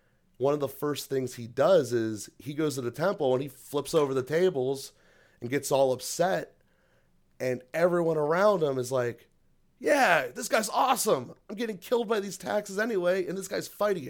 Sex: male